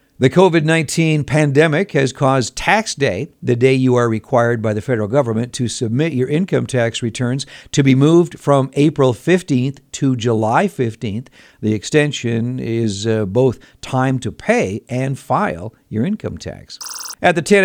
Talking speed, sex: 160 wpm, male